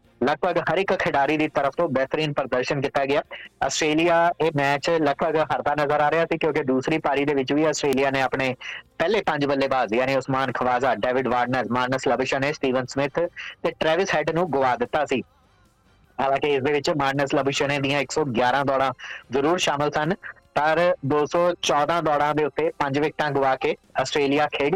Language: English